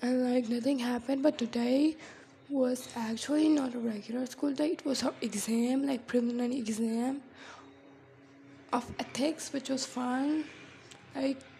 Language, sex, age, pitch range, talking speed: English, female, 10-29, 240-275 Hz, 135 wpm